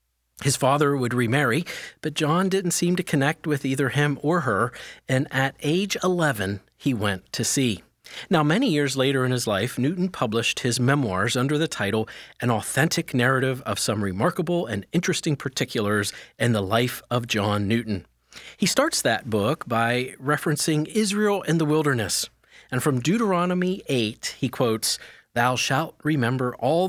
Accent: American